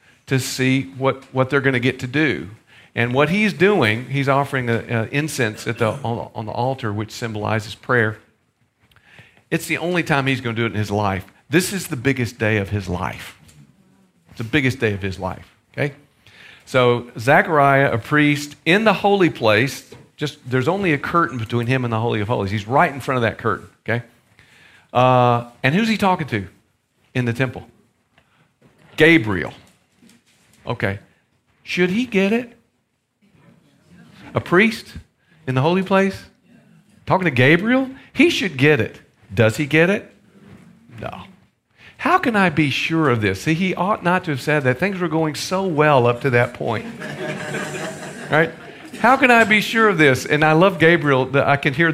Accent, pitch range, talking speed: American, 115-170 Hz, 180 wpm